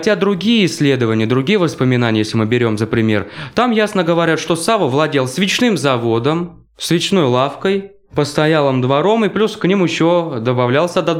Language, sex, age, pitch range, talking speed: Russian, male, 20-39, 125-175 Hz, 155 wpm